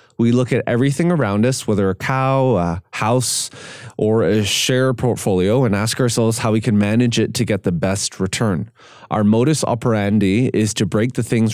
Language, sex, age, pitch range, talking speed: English, male, 20-39, 105-120 Hz, 185 wpm